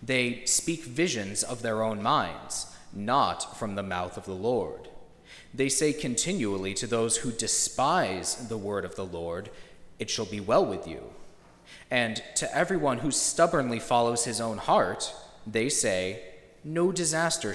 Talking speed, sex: 155 wpm, male